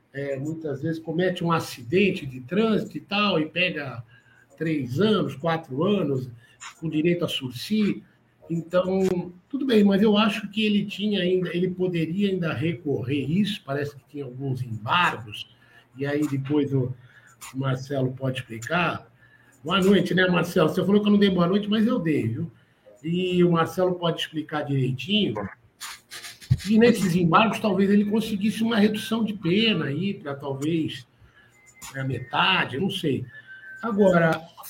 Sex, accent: male, Brazilian